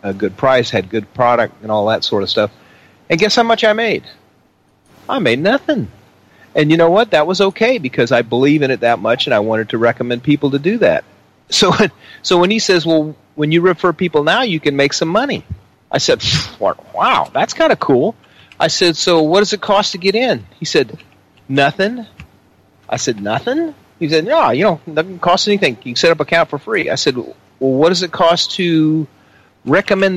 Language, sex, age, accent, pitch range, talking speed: English, male, 40-59, American, 125-180 Hz, 215 wpm